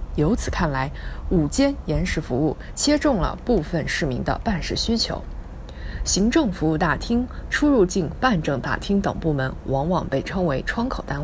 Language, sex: Chinese, female